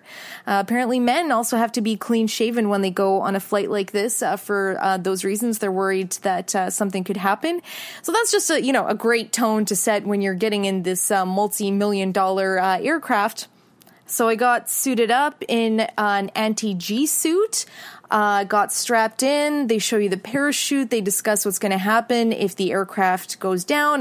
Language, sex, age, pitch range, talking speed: English, female, 20-39, 195-245 Hz, 200 wpm